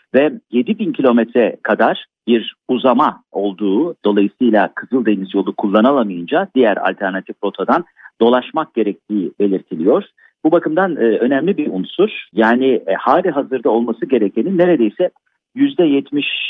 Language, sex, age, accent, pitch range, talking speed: Turkish, male, 50-69, native, 105-160 Hz, 125 wpm